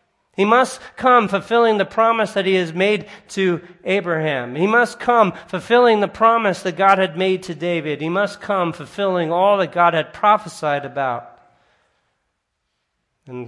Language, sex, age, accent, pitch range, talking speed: English, male, 40-59, American, 140-180 Hz, 155 wpm